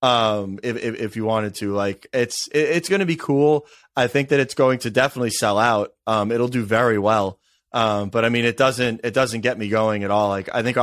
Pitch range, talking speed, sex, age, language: 115-135 Hz, 245 wpm, male, 20-39, English